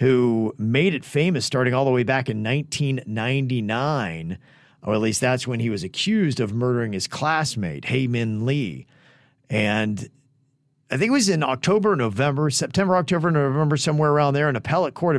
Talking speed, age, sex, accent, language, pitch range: 170 wpm, 40-59, male, American, English, 120-150 Hz